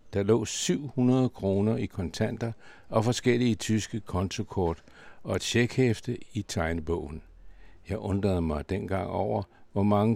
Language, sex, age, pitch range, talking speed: Danish, male, 60-79, 95-120 Hz, 130 wpm